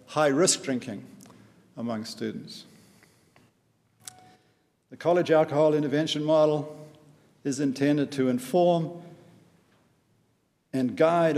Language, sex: English, male